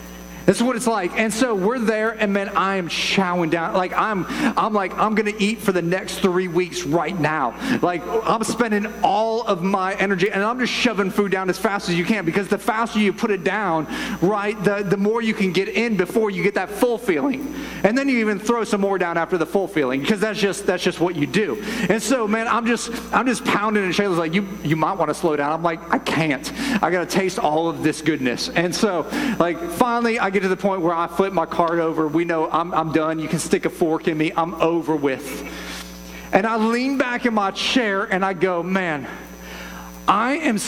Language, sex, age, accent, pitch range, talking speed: English, male, 30-49, American, 175-225 Hz, 235 wpm